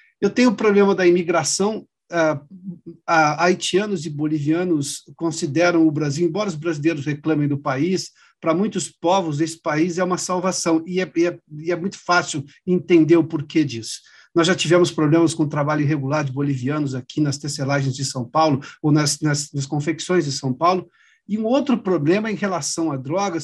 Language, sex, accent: Portuguese, male, Brazilian